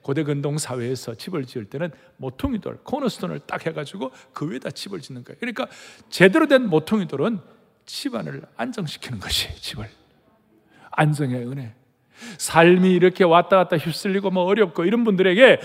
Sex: male